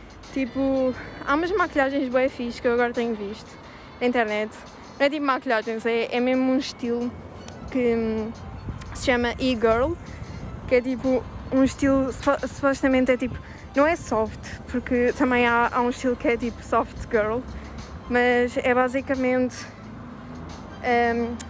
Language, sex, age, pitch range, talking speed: Arabic, female, 20-39, 225-260 Hz, 140 wpm